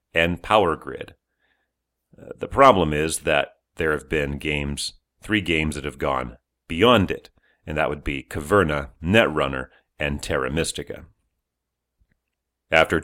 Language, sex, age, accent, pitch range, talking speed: English, male, 40-59, American, 75-100 Hz, 135 wpm